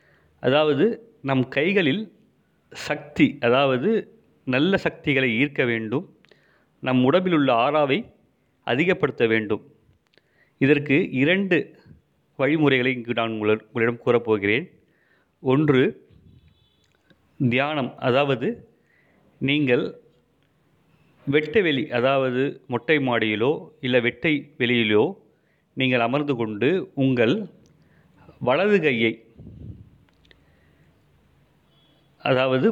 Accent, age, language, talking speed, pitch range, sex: native, 30-49, Tamil, 70 wpm, 125-165 Hz, male